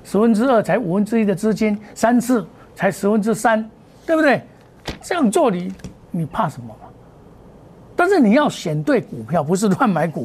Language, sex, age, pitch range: Chinese, male, 60-79, 150-220 Hz